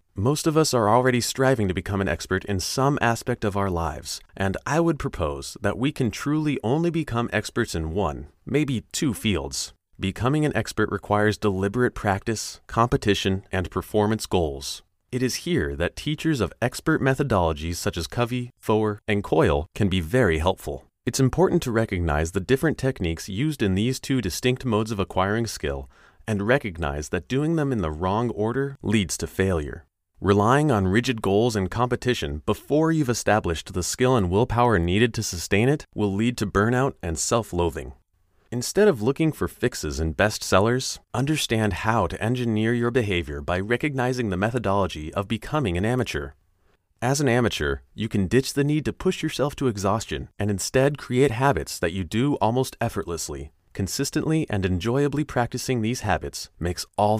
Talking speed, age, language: 170 wpm, 30-49, English